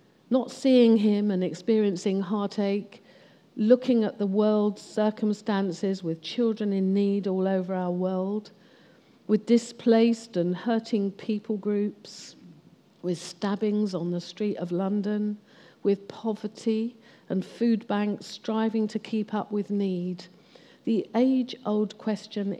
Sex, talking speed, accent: female, 120 wpm, British